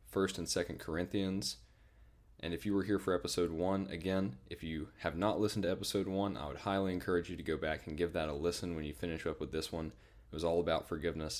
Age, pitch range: 10-29, 80-95 Hz